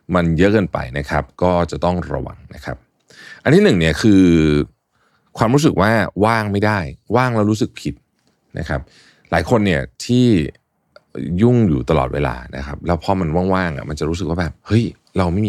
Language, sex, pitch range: Thai, male, 75-105 Hz